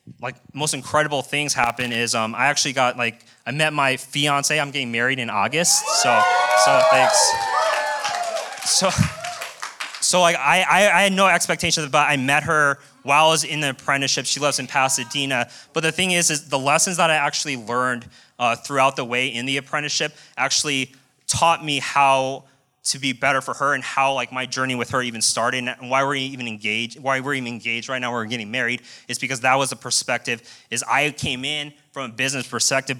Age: 20-39